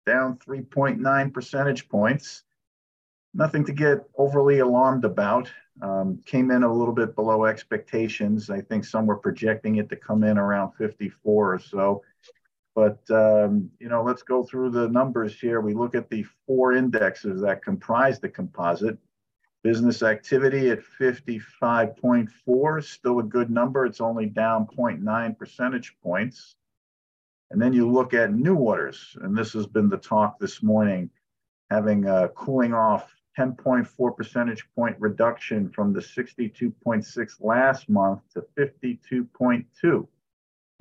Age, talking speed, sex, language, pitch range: 50-69, 140 wpm, male, English, 105-125 Hz